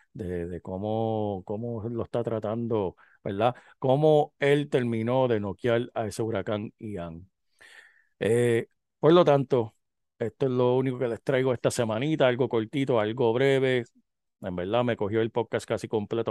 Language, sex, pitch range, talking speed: Spanish, male, 115-140 Hz, 155 wpm